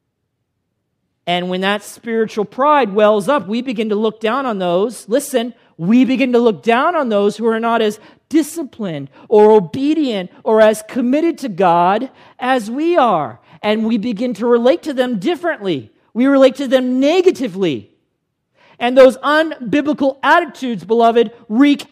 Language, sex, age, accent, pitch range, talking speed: English, male, 40-59, American, 215-295 Hz, 155 wpm